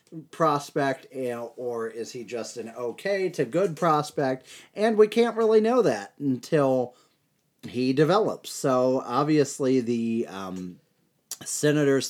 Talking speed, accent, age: 120 wpm, American, 30-49